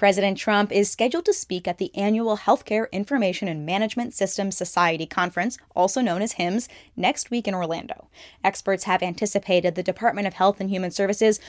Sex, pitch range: female, 180-225 Hz